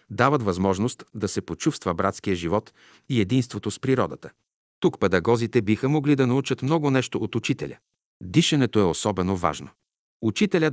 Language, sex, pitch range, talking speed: Bulgarian, male, 95-130 Hz, 145 wpm